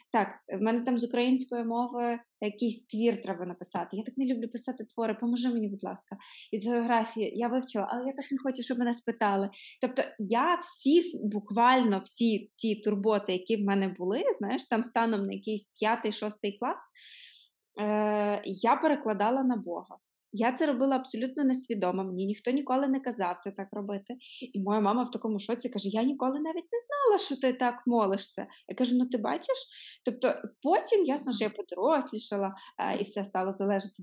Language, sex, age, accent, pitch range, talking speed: Ukrainian, female, 20-39, native, 200-245 Hz, 175 wpm